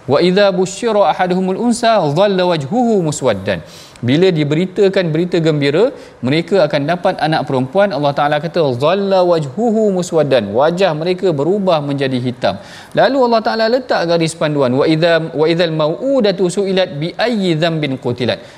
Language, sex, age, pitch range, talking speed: Malayalam, male, 40-59, 150-195 Hz, 145 wpm